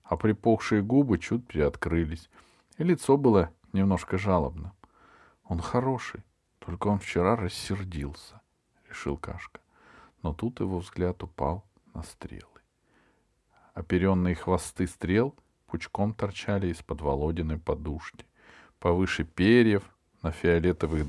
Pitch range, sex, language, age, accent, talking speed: 85-110 Hz, male, Russian, 40-59, native, 105 wpm